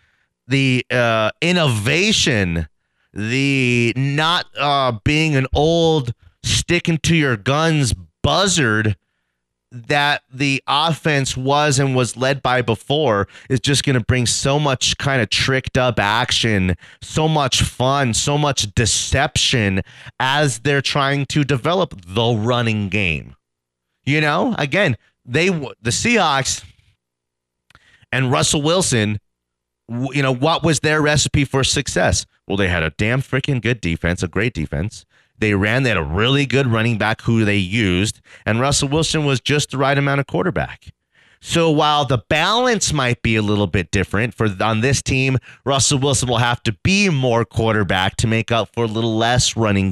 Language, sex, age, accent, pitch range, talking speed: English, male, 30-49, American, 105-140 Hz, 150 wpm